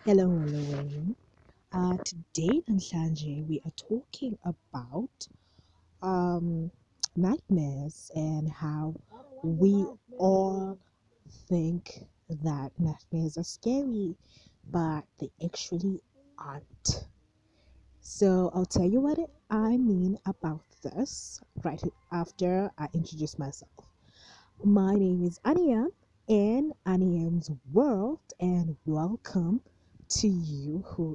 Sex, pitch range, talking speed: female, 155-195 Hz, 100 wpm